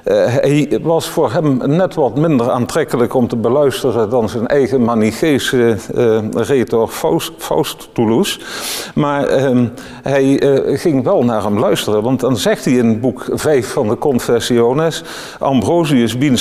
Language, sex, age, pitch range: Dutch, male, 50-69, 115-140 Hz